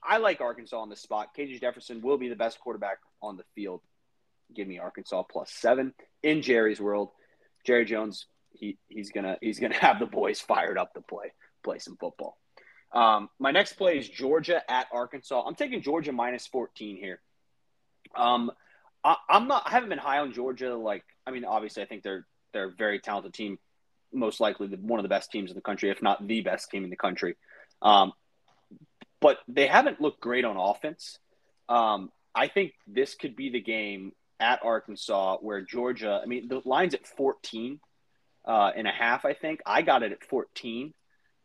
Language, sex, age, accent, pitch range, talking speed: English, male, 30-49, American, 110-135 Hz, 195 wpm